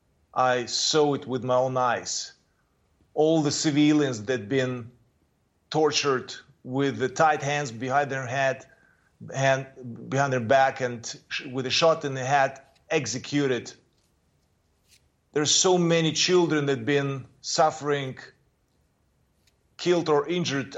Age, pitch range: 30-49, 125-155 Hz